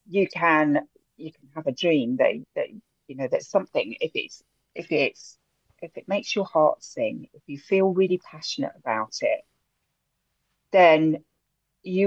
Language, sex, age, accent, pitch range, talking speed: English, female, 40-59, British, 155-200 Hz, 160 wpm